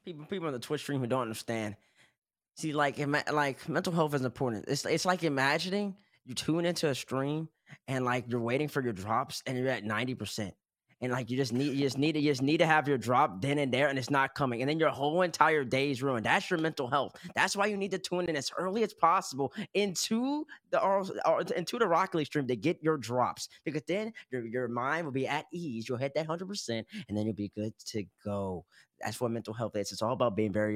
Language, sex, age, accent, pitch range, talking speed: English, male, 20-39, American, 115-150 Hz, 245 wpm